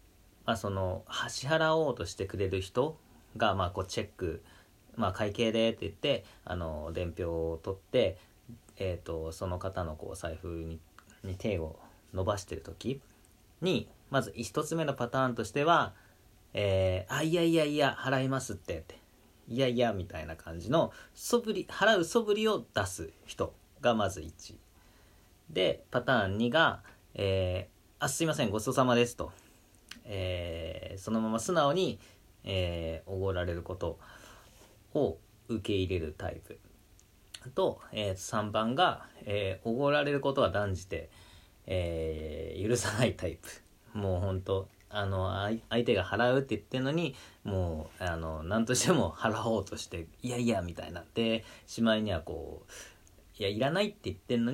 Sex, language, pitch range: male, Japanese, 90-120 Hz